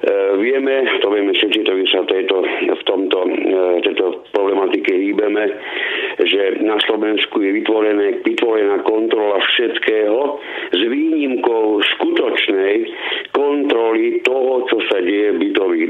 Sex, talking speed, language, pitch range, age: male, 115 wpm, Slovak, 345-420 Hz, 60-79